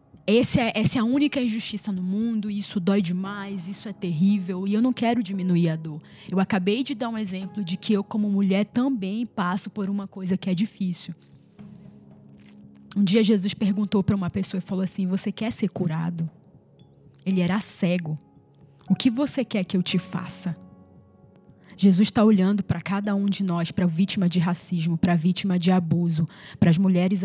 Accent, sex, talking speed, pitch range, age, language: Brazilian, female, 190 wpm, 175-200 Hz, 10-29, Portuguese